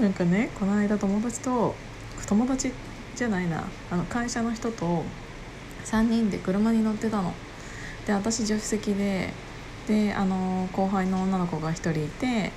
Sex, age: female, 20-39